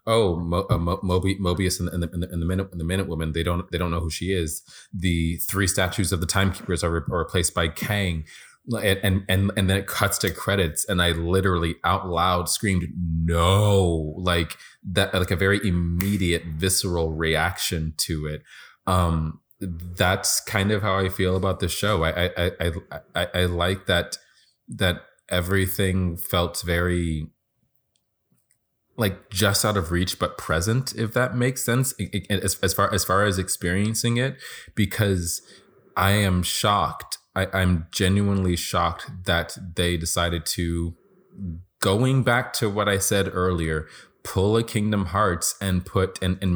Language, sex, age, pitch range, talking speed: English, male, 30-49, 85-100 Hz, 160 wpm